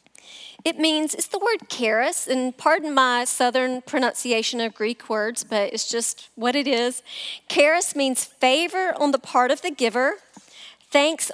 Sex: female